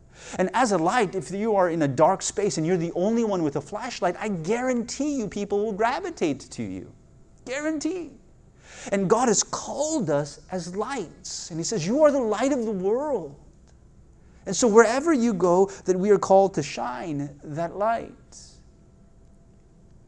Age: 30-49